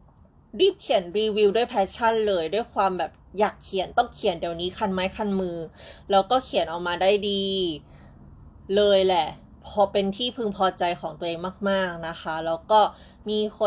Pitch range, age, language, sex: 170-210 Hz, 20-39, Thai, female